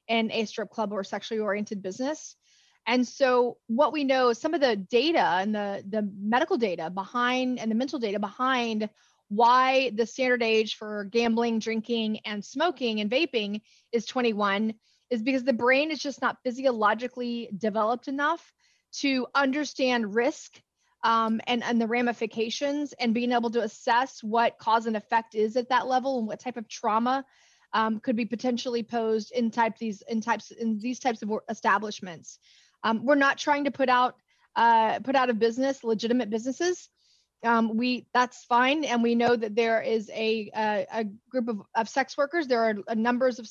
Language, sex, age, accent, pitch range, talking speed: English, female, 20-39, American, 225-260 Hz, 180 wpm